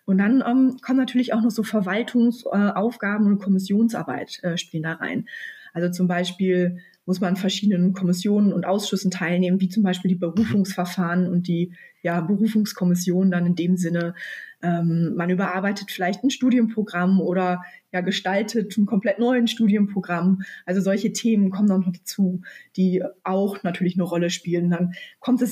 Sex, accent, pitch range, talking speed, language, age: female, German, 180-215 Hz, 155 wpm, German, 20-39